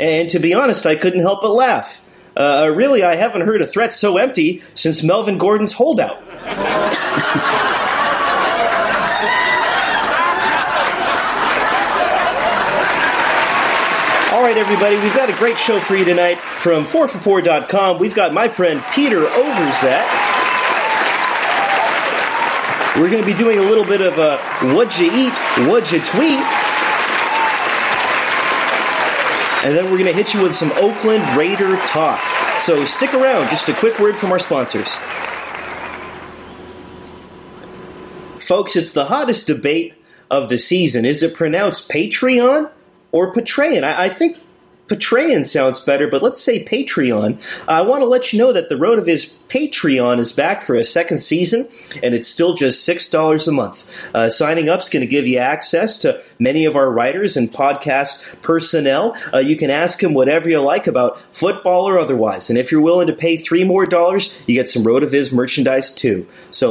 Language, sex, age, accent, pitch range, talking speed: English, male, 30-49, American, 155-220 Hz, 160 wpm